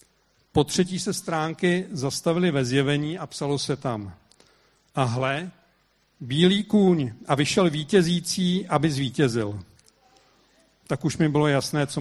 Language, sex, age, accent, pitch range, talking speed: Czech, male, 70-89, native, 130-160 Hz, 130 wpm